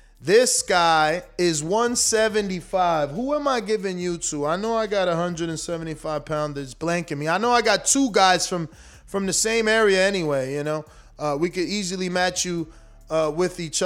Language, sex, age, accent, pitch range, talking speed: English, male, 20-39, American, 150-195 Hz, 180 wpm